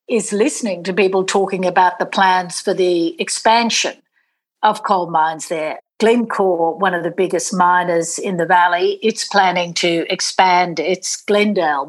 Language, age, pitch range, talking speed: English, 60-79, 180-220 Hz, 150 wpm